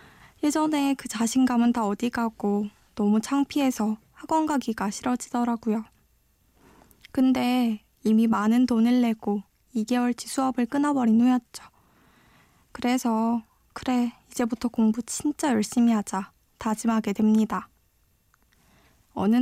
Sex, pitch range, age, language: female, 220-260 Hz, 20-39, Korean